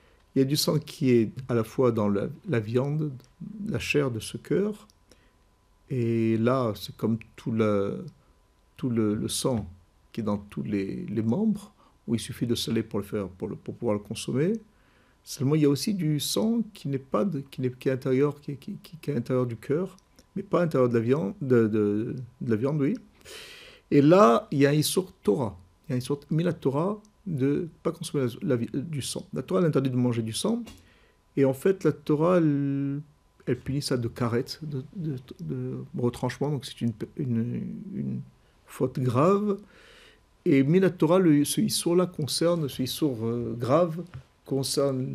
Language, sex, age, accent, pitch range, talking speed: French, male, 50-69, French, 120-170 Hz, 200 wpm